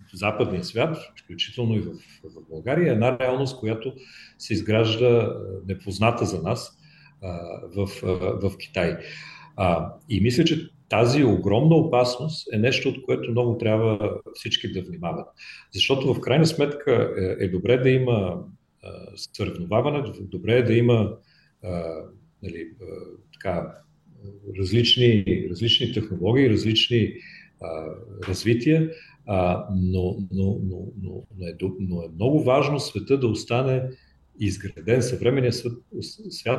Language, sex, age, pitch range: Bulgarian, male, 40-59, 95-125 Hz